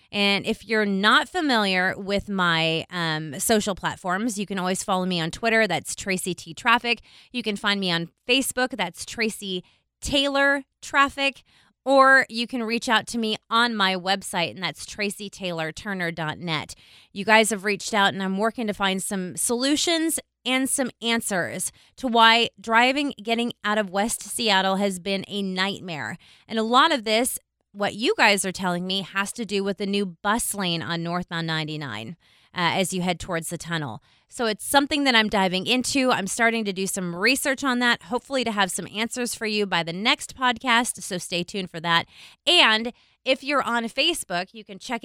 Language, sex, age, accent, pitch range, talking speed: English, female, 20-39, American, 185-235 Hz, 185 wpm